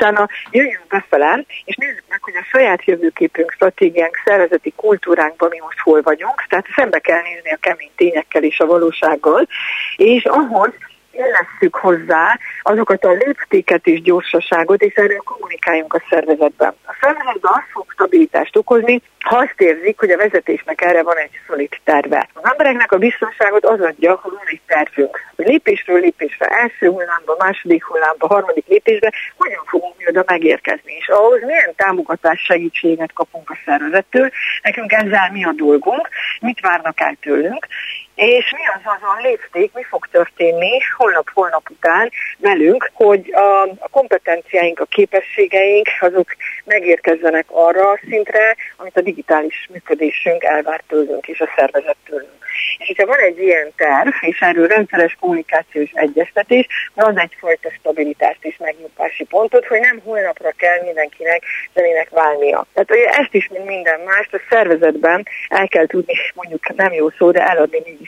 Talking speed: 150 wpm